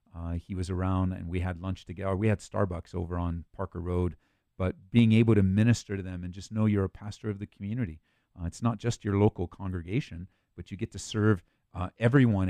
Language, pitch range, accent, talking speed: English, 100-125 Hz, American, 220 wpm